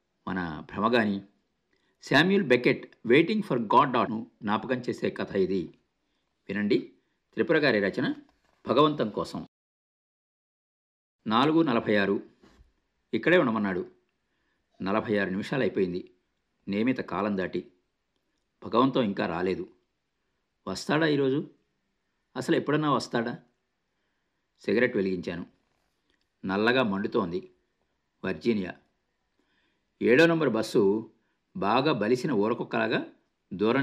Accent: native